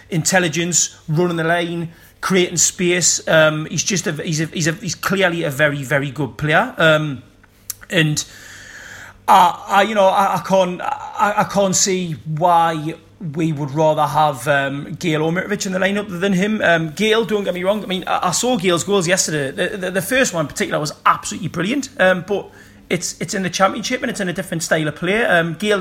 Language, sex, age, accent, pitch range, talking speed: English, male, 30-49, British, 150-185 Hz, 205 wpm